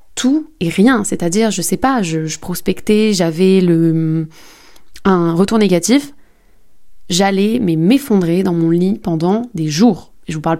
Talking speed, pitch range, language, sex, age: 170 wpm, 170-215 Hz, French, female, 20-39